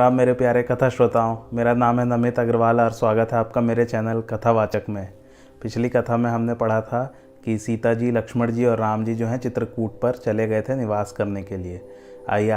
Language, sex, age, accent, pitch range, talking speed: Hindi, male, 30-49, native, 115-135 Hz, 210 wpm